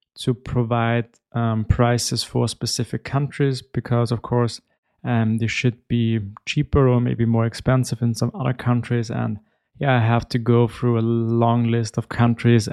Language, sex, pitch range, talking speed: English, male, 115-130 Hz, 165 wpm